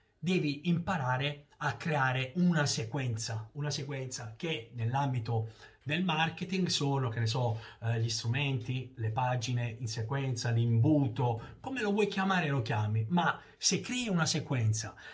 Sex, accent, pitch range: male, native, 115-150 Hz